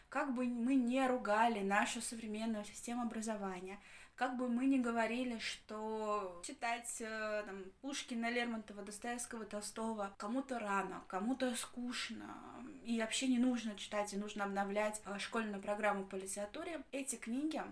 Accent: native